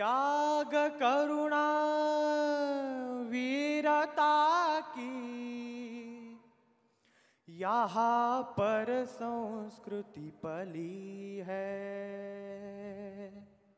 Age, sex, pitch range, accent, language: 20-39, male, 155-235 Hz, native, Hindi